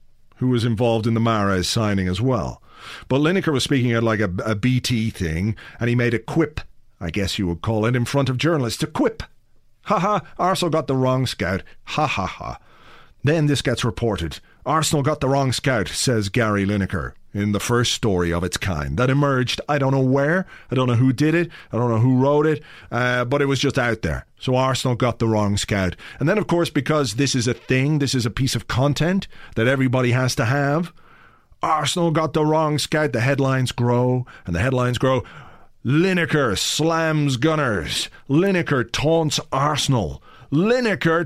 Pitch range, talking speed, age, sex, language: 115-150 Hz, 200 wpm, 40-59, male, English